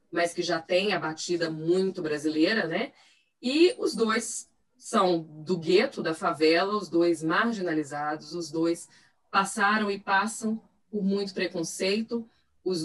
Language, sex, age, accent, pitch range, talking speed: Portuguese, female, 20-39, Brazilian, 165-195 Hz, 135 wpm